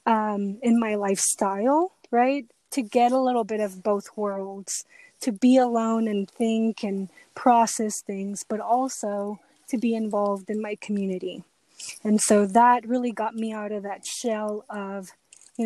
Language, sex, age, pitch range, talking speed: English, female, 20-39, 210-245 Hz, 155 wpm